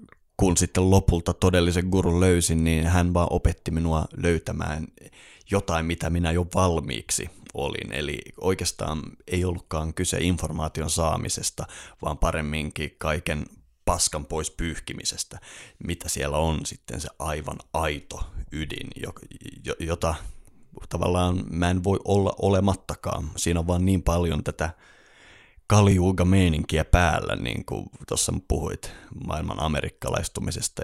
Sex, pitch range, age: male, 80-95 Hz, 30-49